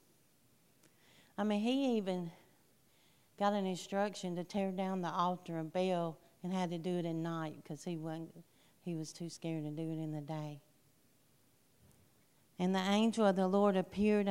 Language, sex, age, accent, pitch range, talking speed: English, female, 50-69, American, 165-200 Hz, 170 wpm